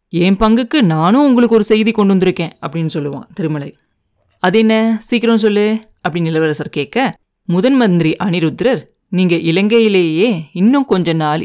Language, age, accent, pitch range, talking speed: Tamil, 30-49, native, 160-220 Hz, 130 wpm